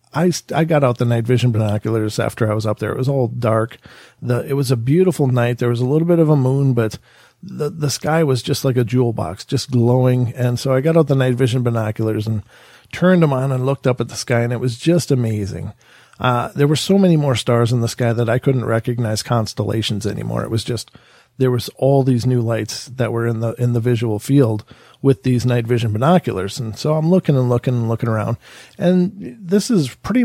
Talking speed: 235 wpm